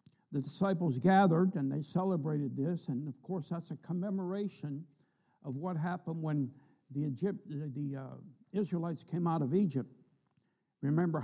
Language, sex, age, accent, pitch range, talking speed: English, male, 60-79, American, 135-170 Hz, 150 wpm